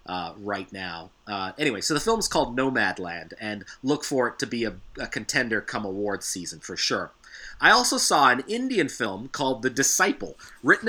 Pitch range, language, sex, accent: 115-145 Hz, English, male, American